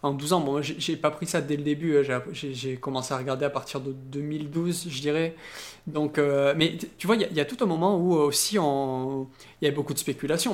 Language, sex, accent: French, male, French